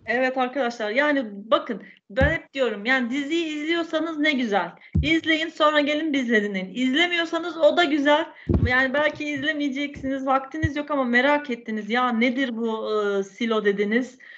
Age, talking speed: 40-59, 145 wpm